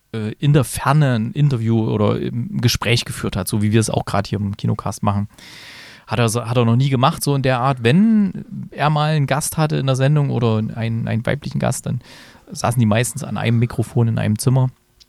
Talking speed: 215 wpm